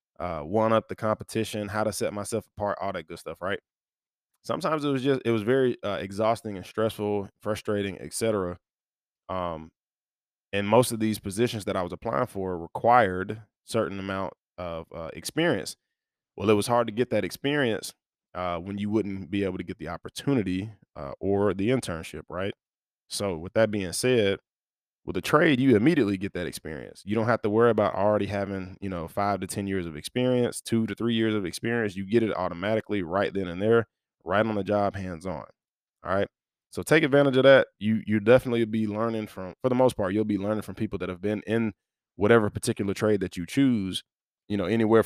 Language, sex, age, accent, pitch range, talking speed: English, male, 20-39, American, 95-110 Hz, 200 wpm